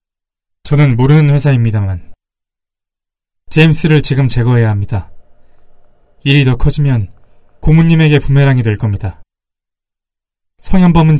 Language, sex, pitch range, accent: Korean, male, 100-145 Hz, native